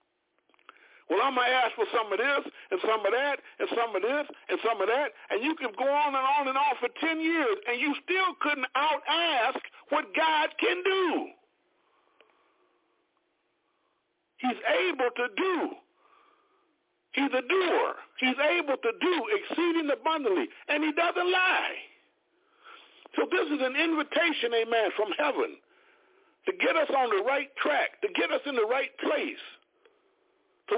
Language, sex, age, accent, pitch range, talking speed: English, male, 50-69, American, 280-390 Hz, 160 wpm